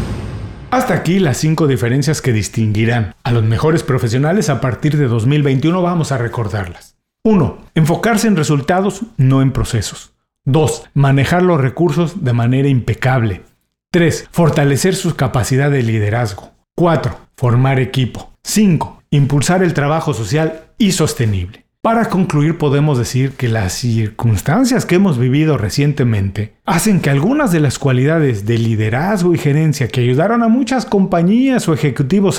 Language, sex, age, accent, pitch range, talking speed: Spanish, male, 40-59, Mexican, 120-165 Hz, 140 wpm